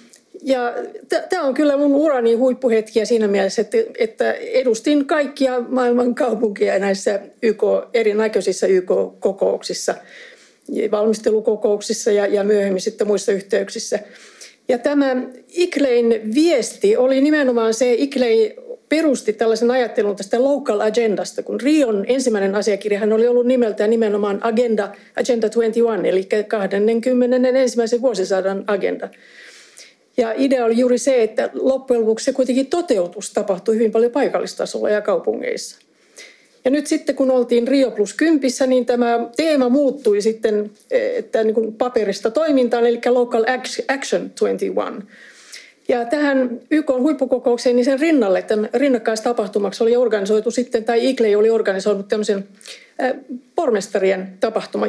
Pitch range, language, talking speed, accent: 220-275 Hz, Finnish, 125 wpm, native